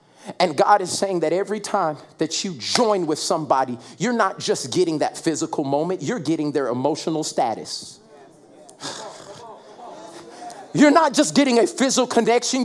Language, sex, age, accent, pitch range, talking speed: English, male, 40-59, American, 210-295 Hz, 145 wpm